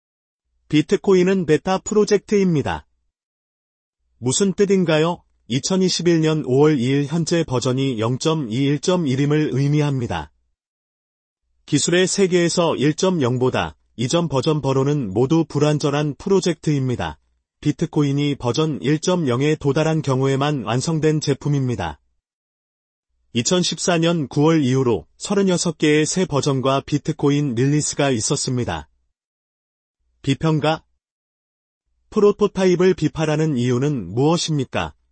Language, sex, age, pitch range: Korean, male, 30-49, 120-165 Hz